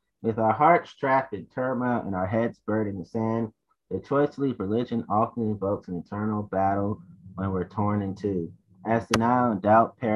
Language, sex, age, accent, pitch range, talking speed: English, male, 30-49, American, 105-130 Hz, 195 wpm